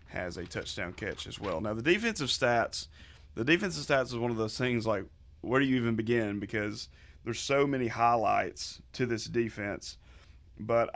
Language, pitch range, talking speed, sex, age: English, 100-120 Hz, 180 wpm, male, 30-49